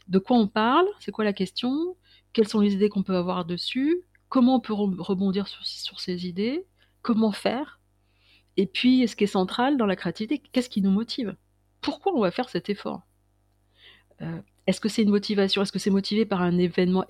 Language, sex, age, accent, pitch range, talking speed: French, female, 40-59, French, 175-220 Hz, 205 wpm